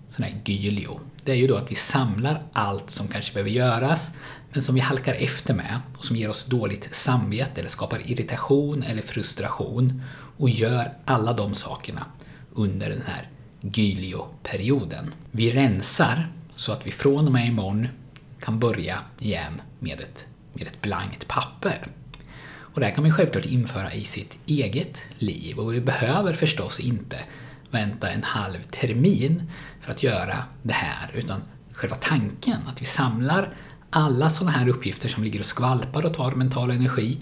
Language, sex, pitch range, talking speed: Swedish, male, 115-145 Hz, 165 wpm